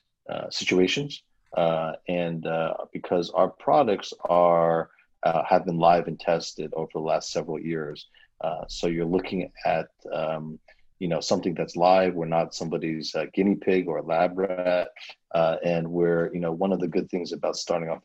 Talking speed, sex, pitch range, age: 180 wpm, male, 85-90 Hz, 40-59